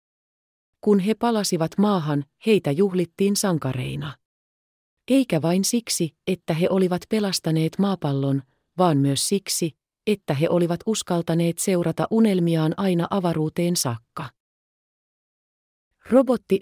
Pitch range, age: 145-190 Hz, 30-49